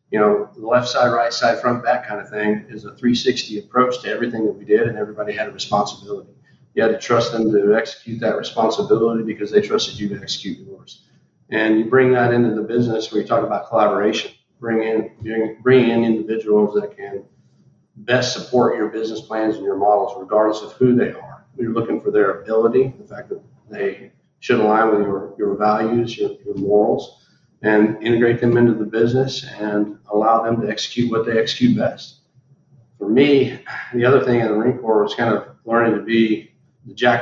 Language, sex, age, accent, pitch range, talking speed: English, male, 50-69, American, 105-125 Hz, 205 wpm